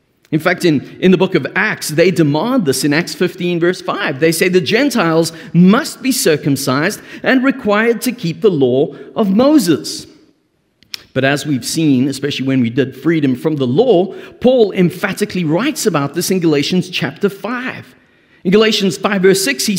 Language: English